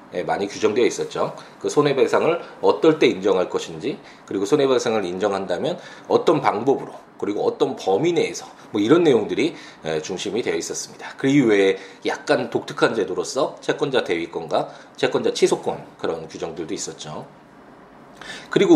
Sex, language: male, Korean